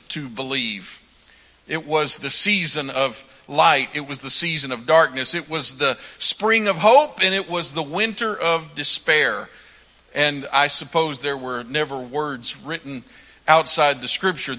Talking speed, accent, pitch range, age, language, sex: 155 wpm, American, 135-165 Hz, 50-69, English, male